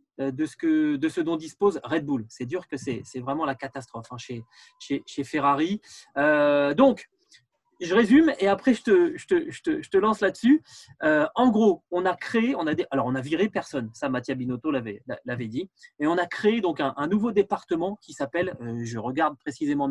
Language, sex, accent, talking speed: French, male, French, 225 wpm